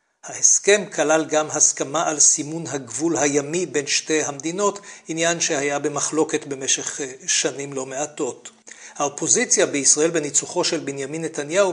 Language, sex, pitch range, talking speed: Hebrew, male, 145-170 Hz, 125 wpm